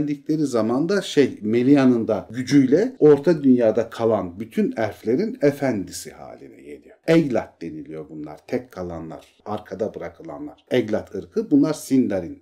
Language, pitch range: Turkish, 105-145 Hz